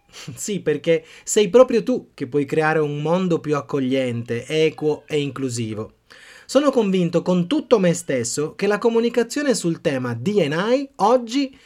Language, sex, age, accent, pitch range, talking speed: Italian, male, 30-49, native, 130-195 Hz, 145 wpm